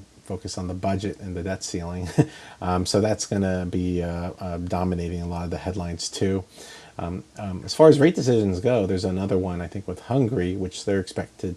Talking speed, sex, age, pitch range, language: 215 wpm, male, 40-59, 90-105 Hz, English